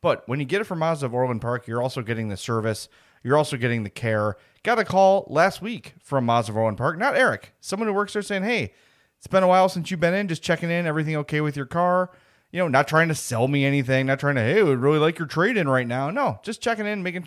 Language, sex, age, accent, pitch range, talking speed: English, male, 30-49, American, 115-155 Hz, 275 wpm